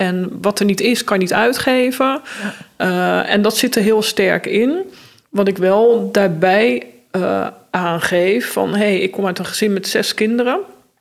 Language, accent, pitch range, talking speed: Dutch, Dutch, 185-225 Hz, 185 wpm